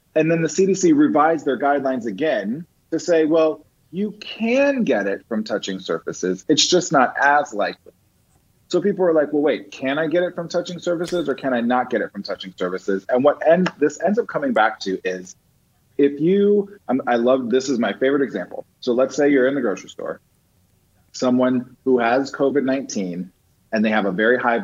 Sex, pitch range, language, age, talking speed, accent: male, 110-170 Hz, English, 30-49, 195 wpm, American